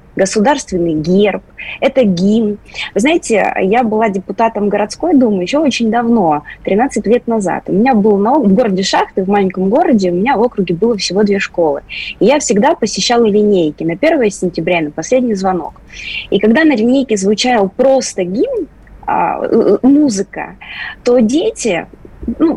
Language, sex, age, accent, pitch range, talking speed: Russian, female, 20-39, native, 205-270 Hz, 150 wpm